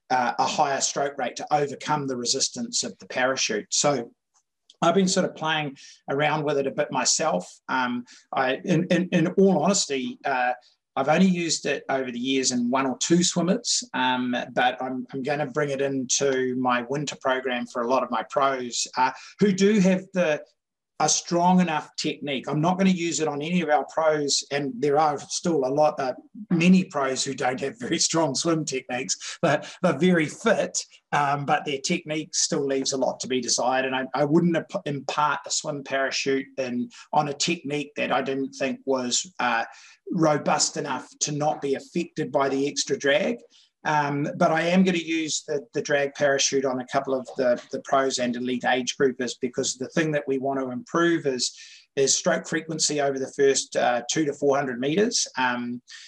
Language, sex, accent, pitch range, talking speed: English, male, Australian, 135-170 Hz, 195 wpm